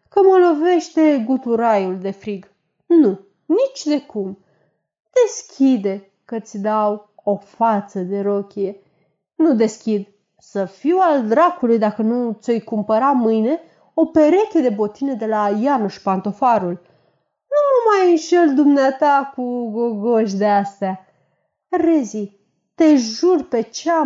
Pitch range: 210-295 Hz